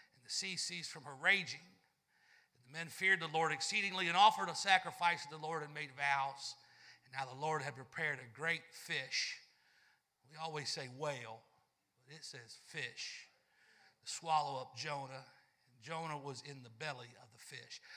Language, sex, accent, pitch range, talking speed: English, male, American, 135-160 Hz, 170 wpm